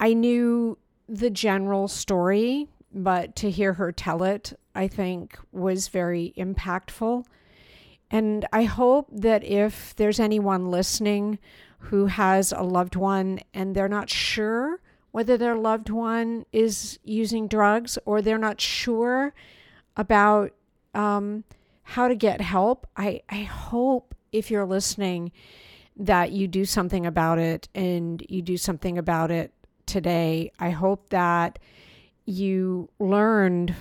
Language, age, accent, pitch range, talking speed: English, 50-69, American, 185-225 Hz, 130 wpm